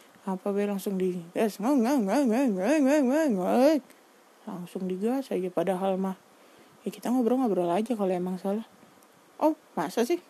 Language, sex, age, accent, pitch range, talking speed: Indonesian, female, 20-39, native, 185-245 Hz, 115 wpm